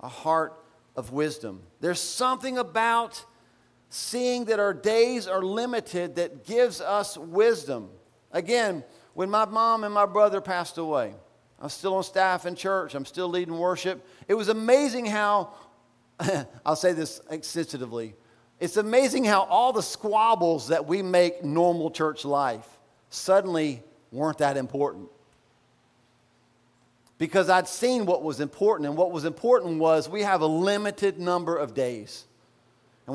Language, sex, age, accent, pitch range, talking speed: English, male, 50-69, American, 155-210 Hz, 145 wpm